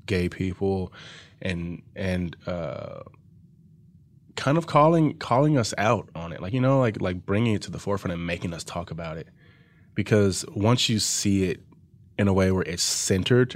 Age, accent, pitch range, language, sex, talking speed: 20-39, American, 90-110 Hz, English, male, 175 wpm